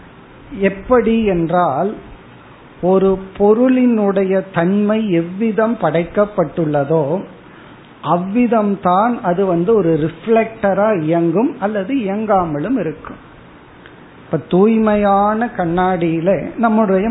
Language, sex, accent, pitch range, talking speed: Tamil, male, native, 155-205 Hz, 65 wpm